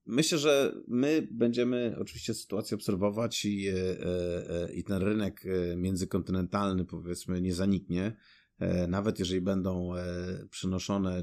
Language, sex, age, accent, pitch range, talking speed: Polish, male, 30-49, native, 90-110 Hz, 100 wpm